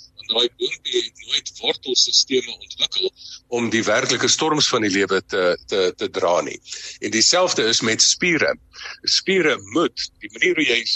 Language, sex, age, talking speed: English, male, 50-69, 160 wpm